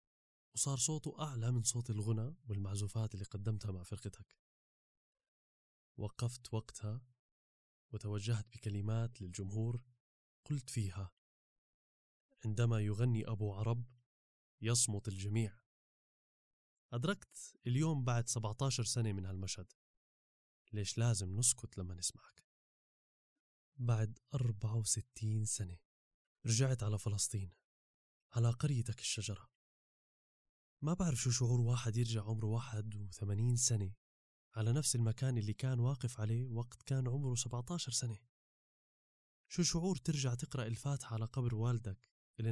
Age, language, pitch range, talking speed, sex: 20-39, Arabic, 105-125 Hz, 105 wpm, male